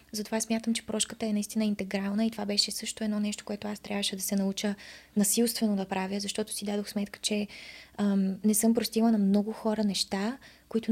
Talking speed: 200 wpm